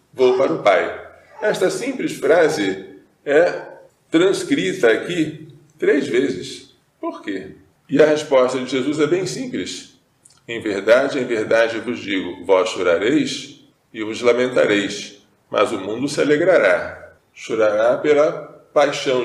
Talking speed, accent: 130 wpm, Brazilian